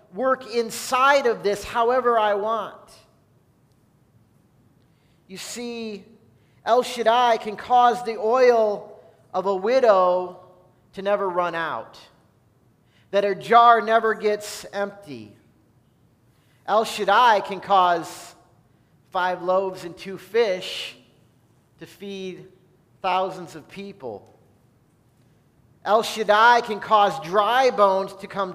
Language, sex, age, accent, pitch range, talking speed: English, male, 40-59, American, 155-220 Hz, 105 wpm